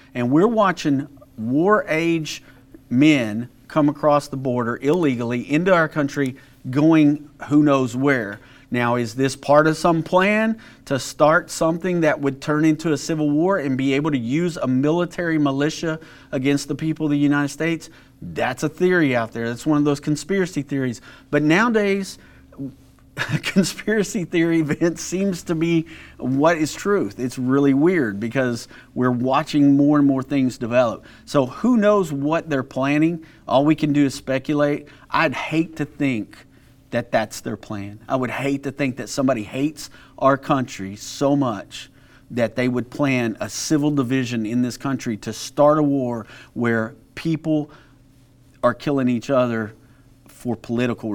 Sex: male